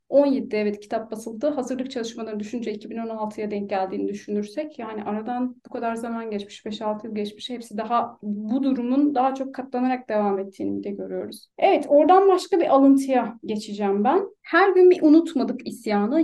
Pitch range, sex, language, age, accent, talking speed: 210-280 Hz, female, Turkish, 30-49, native, 160 wpm